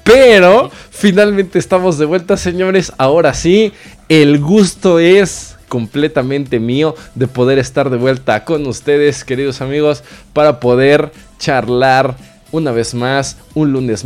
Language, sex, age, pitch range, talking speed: Spanish, male, 20-39, 120-155 Hz, 130 wpm